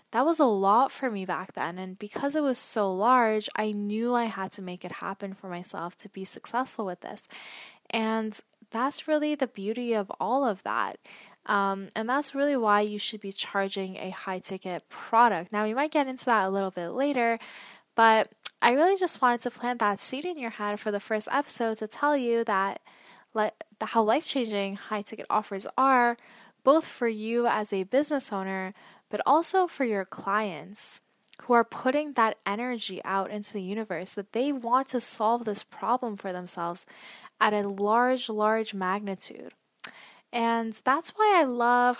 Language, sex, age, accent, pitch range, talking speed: English, female, 10-29, American, 200-250 Hz, 185 wpm